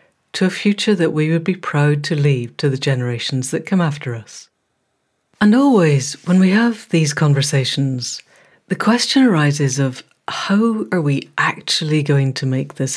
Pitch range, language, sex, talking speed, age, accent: 140-185 Hz, English, female, 160 wpm, 60-79, British